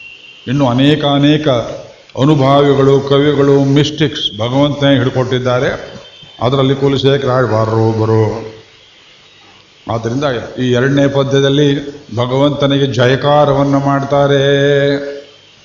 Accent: native